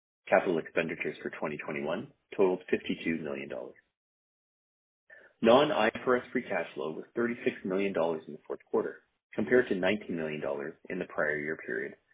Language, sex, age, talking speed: English, male, 30-49, 135 wpm